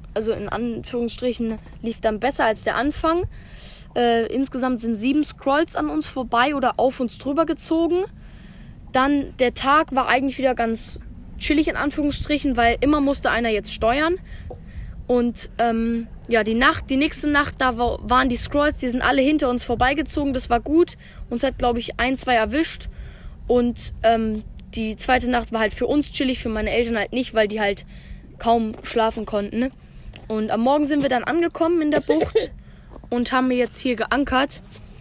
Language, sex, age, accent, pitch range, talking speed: German, female, 10-29, German, 225-270 Hz, 175 wpm